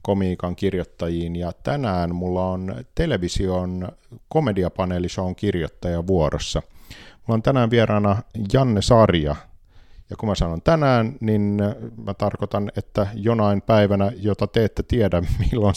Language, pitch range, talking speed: Finnish, 90-110 Hz, 120 wpm